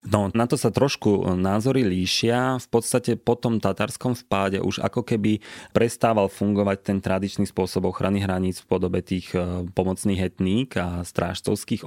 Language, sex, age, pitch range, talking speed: Slovak, male, 20-39, 90-100 Hz, 145 wpm